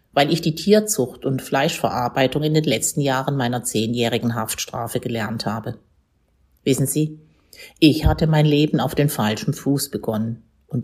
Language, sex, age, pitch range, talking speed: German, female, 50-69, 120-155 Hz, 150 wpm